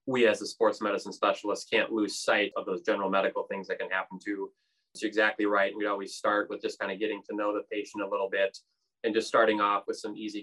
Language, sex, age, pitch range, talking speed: English, male, 20-39, 95-110 Hz, 245 wpm